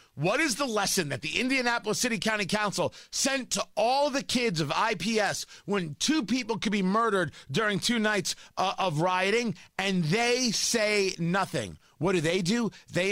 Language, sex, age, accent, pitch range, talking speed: English, male, 30-49, American, 155-220 Hz, 170 wpm